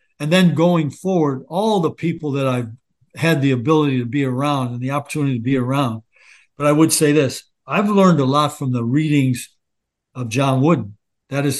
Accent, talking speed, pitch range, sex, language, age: American, 190 wpm, 130-155 Hz, male, English, 60-79